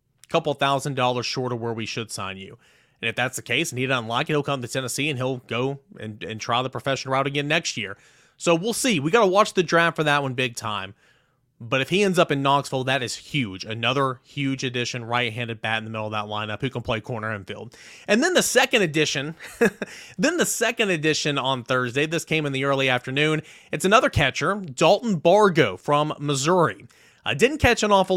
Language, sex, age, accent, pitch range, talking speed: English, male, 30-49, American, 125-170 Hz, 230 wpm